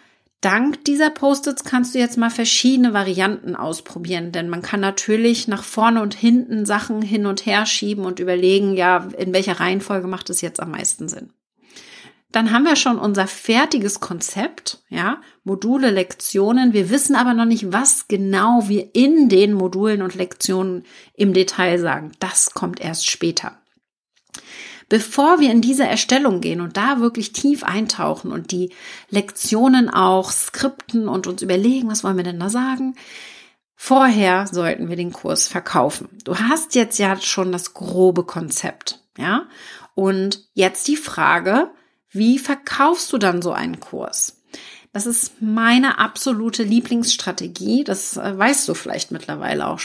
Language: German